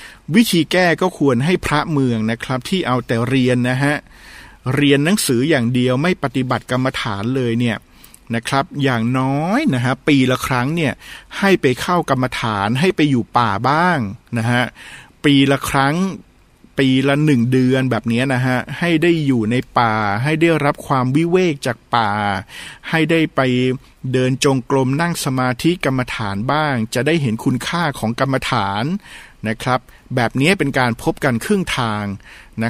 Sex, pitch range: male, 120-150 Hz